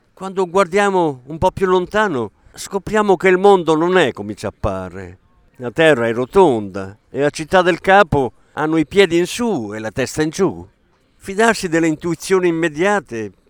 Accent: native